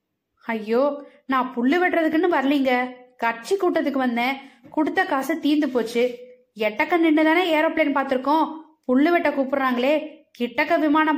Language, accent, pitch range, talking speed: Tamil, native, 235-300 Hz, 120 wpm